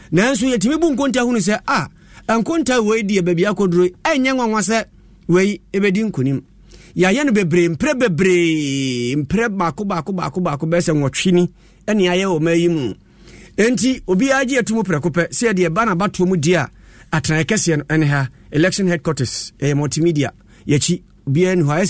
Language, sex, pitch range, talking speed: English, male, 170-225 Hz, 145 wpm